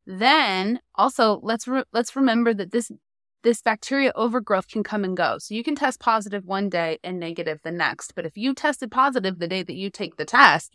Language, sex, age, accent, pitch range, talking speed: English, female, 20-39, American, 170-215 Hz, 210 wpm